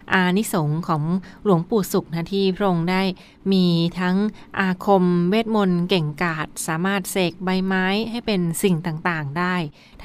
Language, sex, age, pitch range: Thai, female, 20-39, 170-195 Hz